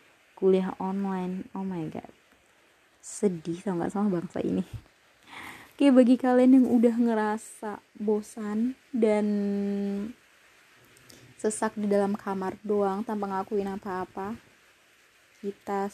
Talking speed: 100 wpm